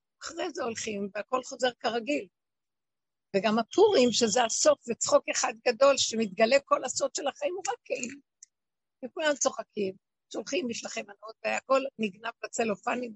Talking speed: 135 wpm